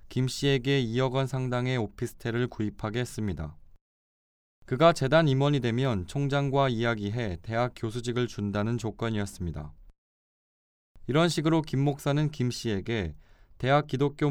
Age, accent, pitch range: 20-39, native, 100-140 Hz